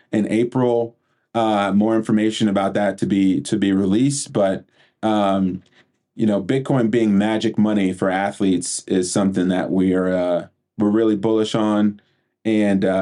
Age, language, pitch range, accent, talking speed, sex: 30-49, English, 95-115 Hz, American, 145 wpm, male